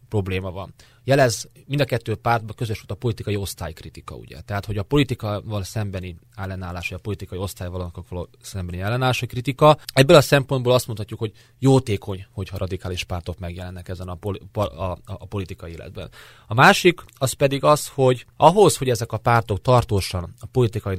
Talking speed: 170 wpm